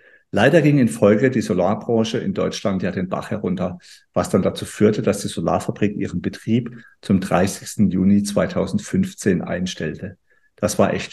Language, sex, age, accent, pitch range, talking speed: German, male, 50-69, German, 105-145 Hz, 155 wpm